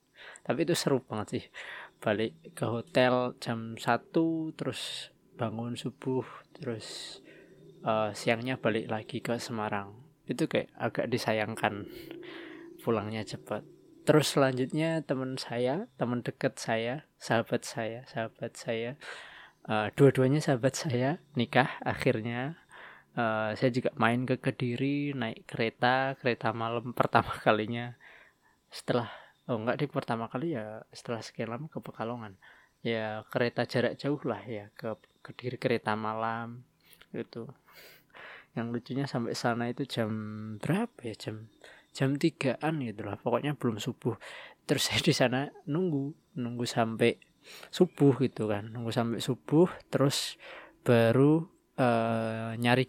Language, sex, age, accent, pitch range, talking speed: Indonesian, male, 20-39, native, 115-140 Hz, 125 wpm